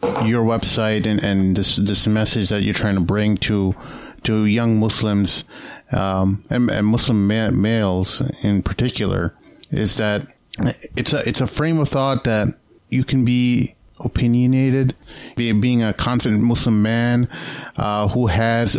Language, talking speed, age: English, 150 wpm, 30-49